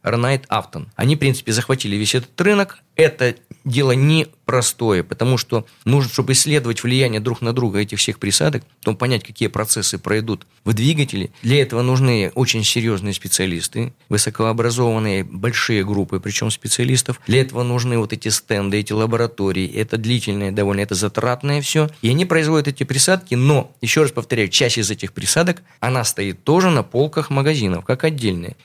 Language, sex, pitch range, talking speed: Russian, male, 105-135 Hz, 160 wpm